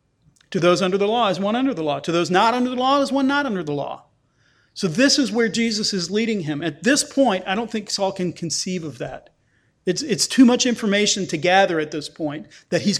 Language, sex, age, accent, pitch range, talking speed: English, male, 40-59, American, 155-210 Hz, 245 wpm